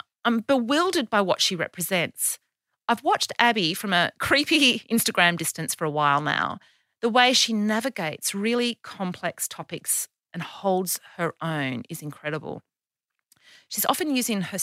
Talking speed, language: 145 wpm, English